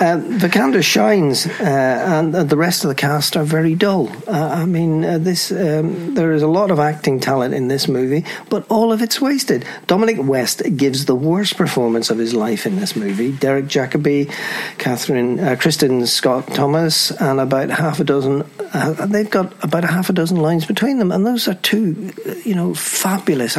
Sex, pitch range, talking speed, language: male, 140-200 Hz, 195 wpm, English